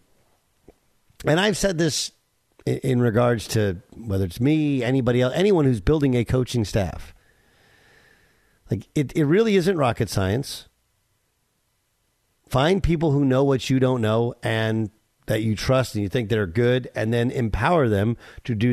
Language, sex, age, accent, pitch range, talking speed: English, male, 50-69, American, 110-145 Hz, 155 wpm